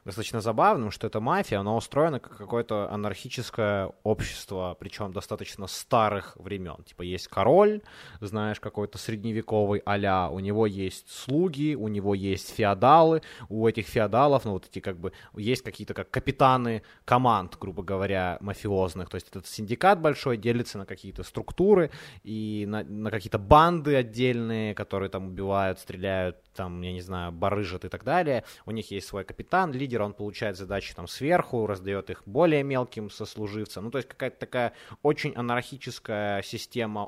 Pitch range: 100-125 Hz